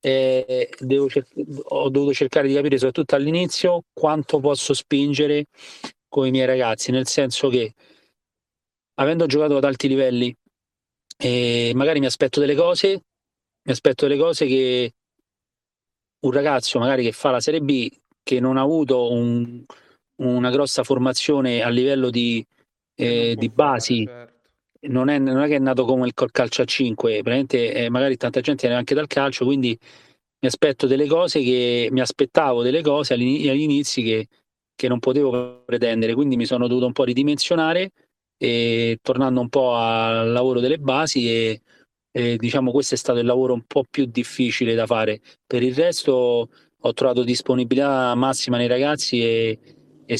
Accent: native